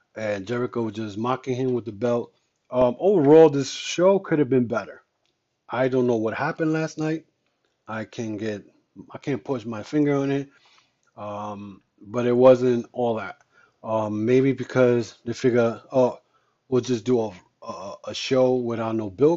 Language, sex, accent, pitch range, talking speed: English, male, American, 110-130 Hz, 175 wpm